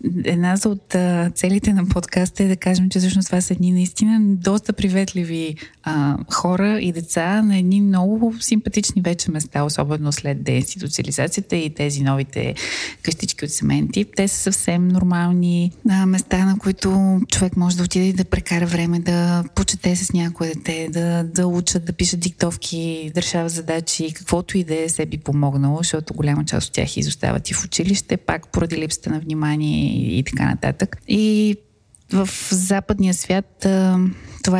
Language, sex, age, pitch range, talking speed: Bulgarian, female, 20-39, 155-190 Hz, 165 wpm